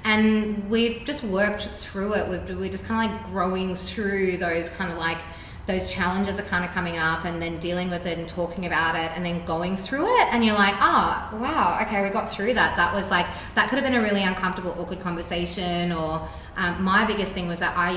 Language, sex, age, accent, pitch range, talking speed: English, female, 20-39, Australian, 170-205 Hz, 230 wpm